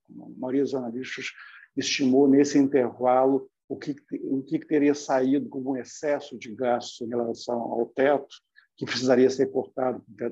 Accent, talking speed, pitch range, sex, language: Brazilian, 150 wpm, 120-145 Hz, male, Portuguese